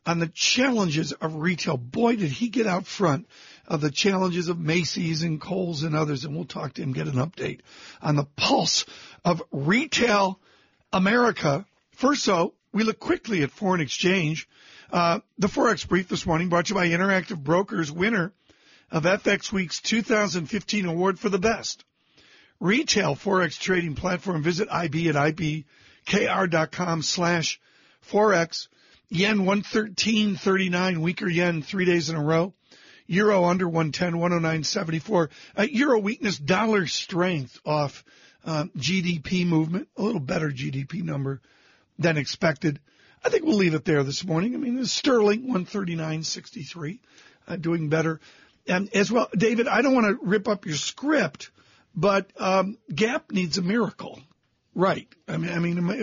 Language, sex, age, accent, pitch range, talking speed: English, male, 50-69, American, 160-205 Hz, 150 wpm